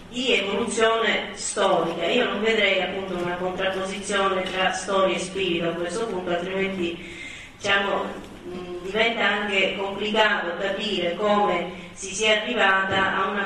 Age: 30-49